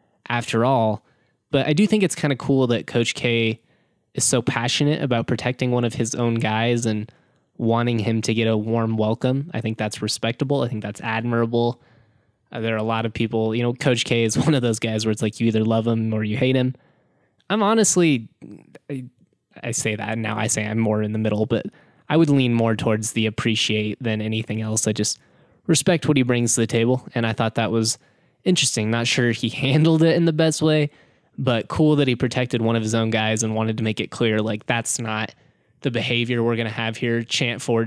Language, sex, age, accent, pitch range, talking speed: English, male, 10-29, American, 110-130 Hz, 225 wpm